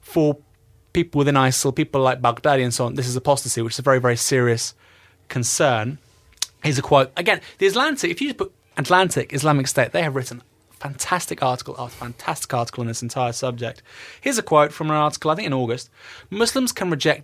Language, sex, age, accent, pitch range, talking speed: English, male, 20-39, British, 125-165 Hz, 200 wpm